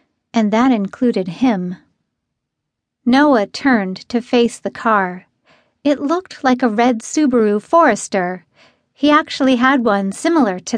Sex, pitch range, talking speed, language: female, 205-275 Hz, 130 wpm, English